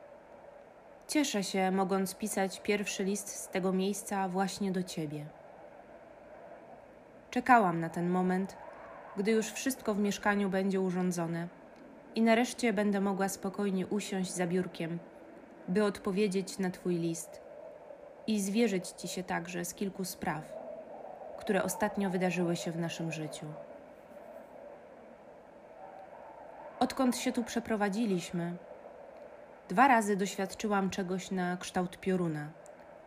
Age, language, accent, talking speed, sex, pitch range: 20-39, Polish, native, 115 wpm, female, 180-210 Hz